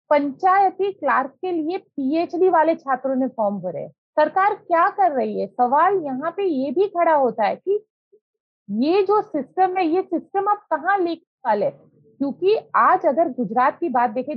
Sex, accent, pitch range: female, native, 265-370 Hz